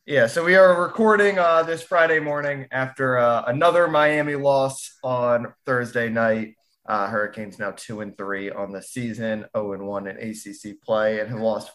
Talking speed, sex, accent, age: 180 wpm, male, American, 20-39